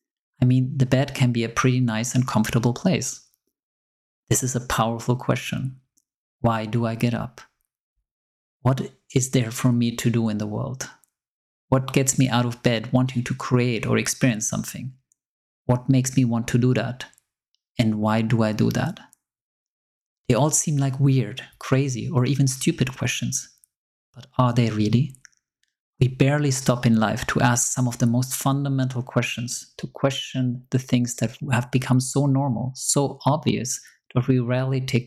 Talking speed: 170 wpm